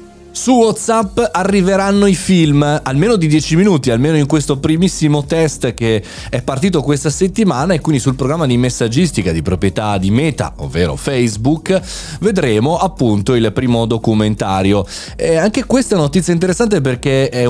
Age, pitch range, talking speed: 30-49, 105-155 Hz, 155 wpm